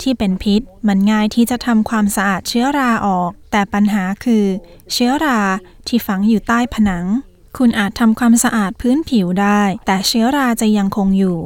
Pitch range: 195-230 Hz